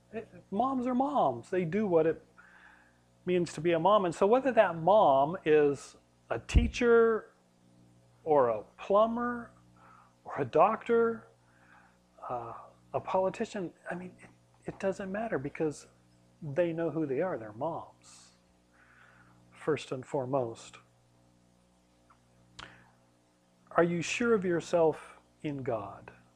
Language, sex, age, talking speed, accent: English, male, 40-59, 125 wpm, American